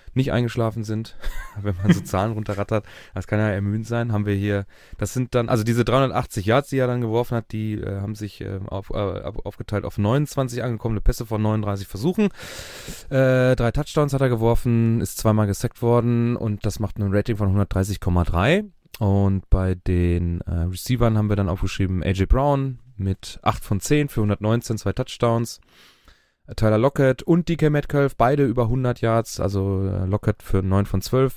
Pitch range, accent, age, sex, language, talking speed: 100-120 Hz, German, 20-39, male, German, 180 wpm